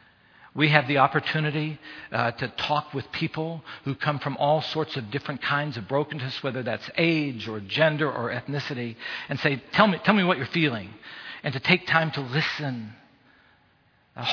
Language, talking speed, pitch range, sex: English, 175 wpm, 150-195 Hz, male